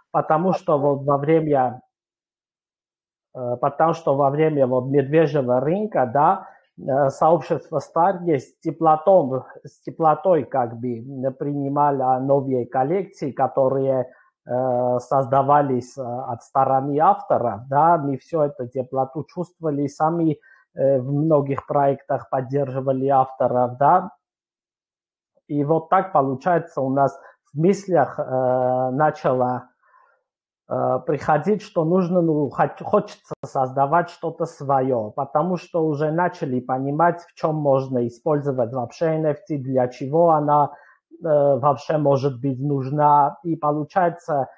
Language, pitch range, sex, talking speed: Russian, 135-165 Hz, male, 110 wpm